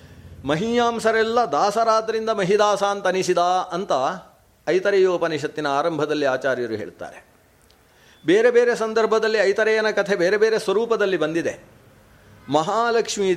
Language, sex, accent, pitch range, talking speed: Kannada, male, native, 130-200 Hz, 80 wpm